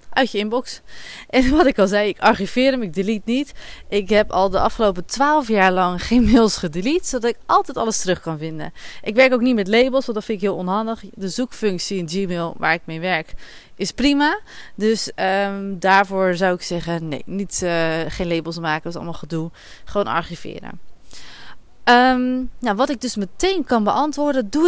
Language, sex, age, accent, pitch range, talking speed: Dutch, female, 20-39, Dutch, 190-250 Hz, 190 wpm